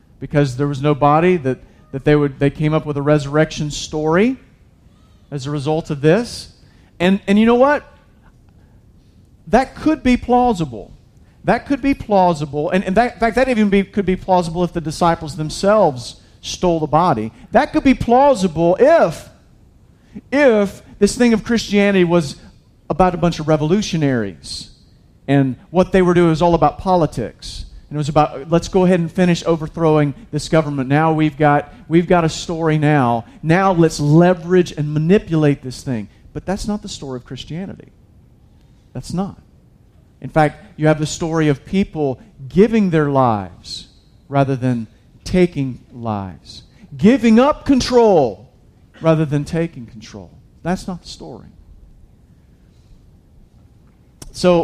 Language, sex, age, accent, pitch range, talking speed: English, male, 40-59, American, 140-190 Hz, 155 wpm